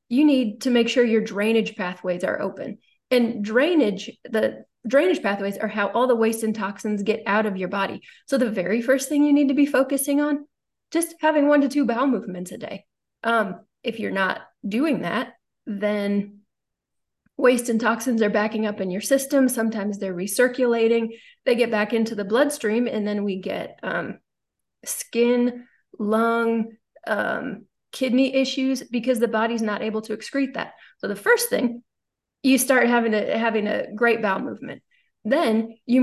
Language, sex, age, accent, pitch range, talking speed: English, female, 30-49, American, 210-250 Hz, 175 wpm